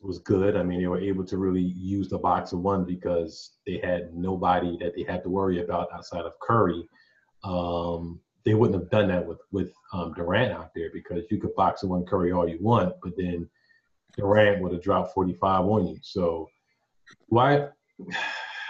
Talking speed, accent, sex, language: 190 wpm, American, male, English